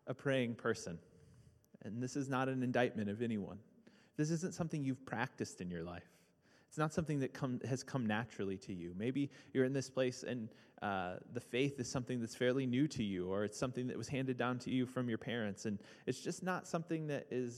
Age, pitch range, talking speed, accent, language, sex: 30-49, 110-135 Hz, 220 wpm, American, English, male